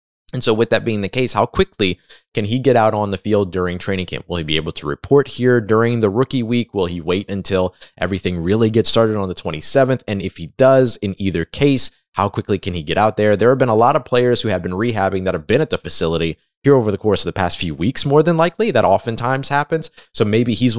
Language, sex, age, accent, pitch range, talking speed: English, male, 20-39, American, 95-120 Hz, 260 wpm